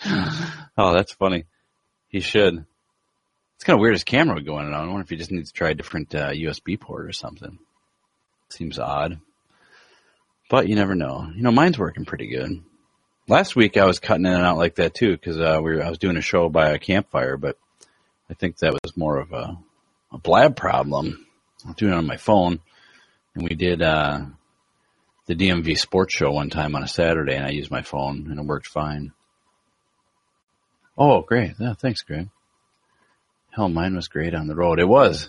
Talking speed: 205 wpm